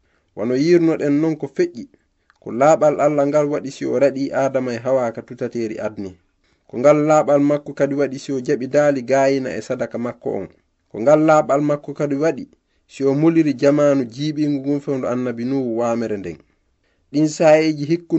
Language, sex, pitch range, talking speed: English, male, 130-155 Hz, 170 wpm